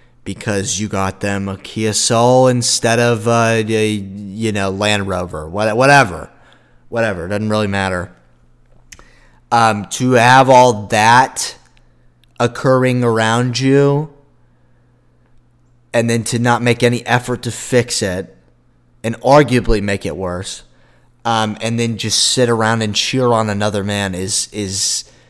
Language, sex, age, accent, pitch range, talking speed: English, male, 20-39, American, 105-130 Hz, 135 wpm